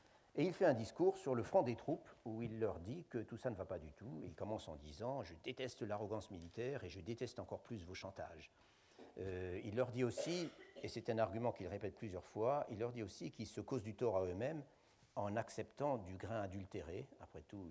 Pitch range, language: 90-120 Hz, French